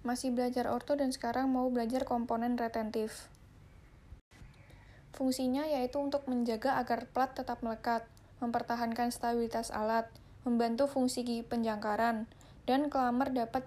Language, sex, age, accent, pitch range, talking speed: Indonesian, female, 10-29, native, 225-250 Hz, 120 wpm